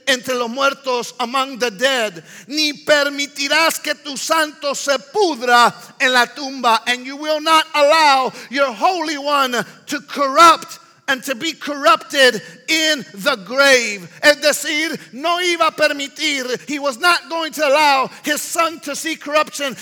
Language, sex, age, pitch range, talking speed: English, male, 50-69, 220-290 Hz, 150 wpm